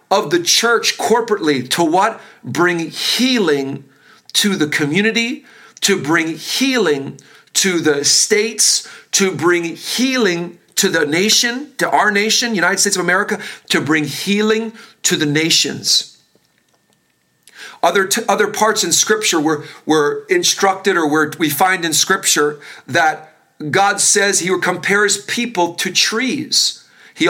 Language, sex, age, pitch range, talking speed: English, male, 40-59, 170-225 Hz, 130 wpm